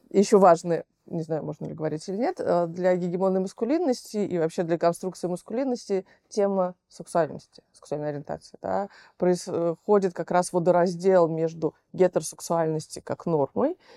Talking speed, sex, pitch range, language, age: 130 wpm, female, 170-210 Hz, Russian, 30-49